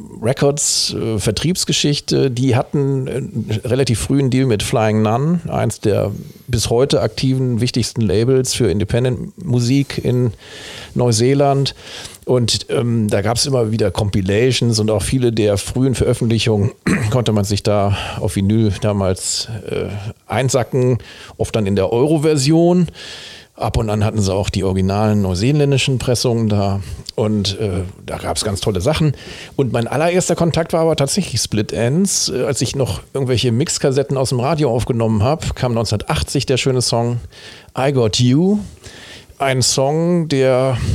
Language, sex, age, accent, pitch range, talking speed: German, male, 50-69, German, 110-135 Hz, 150 wpm